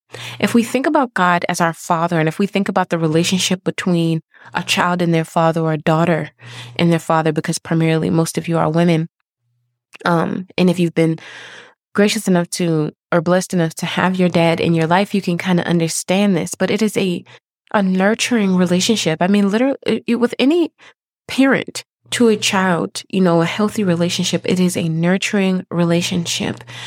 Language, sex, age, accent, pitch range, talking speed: English, female, 20-39, American, 170-205 Hz, 190 wpm